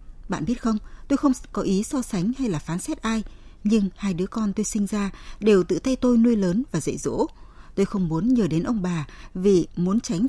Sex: female